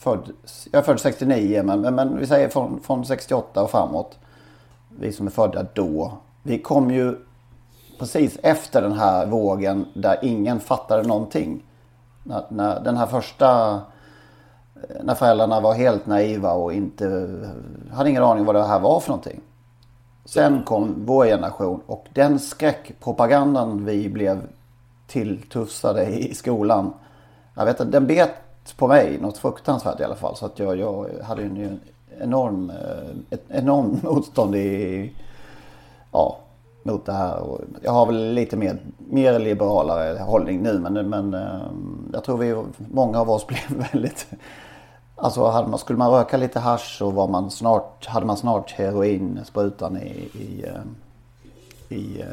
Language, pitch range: Swedish, 100-120 Hz